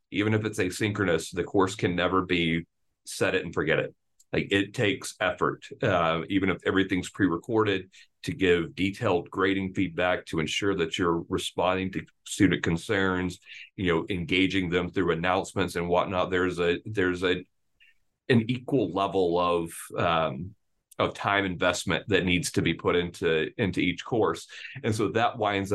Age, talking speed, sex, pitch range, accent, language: 40-59, 160 wpm, male, 85-100 Hz, American, English